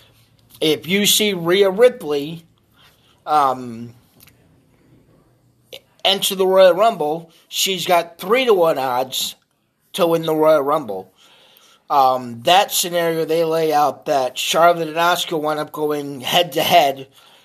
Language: English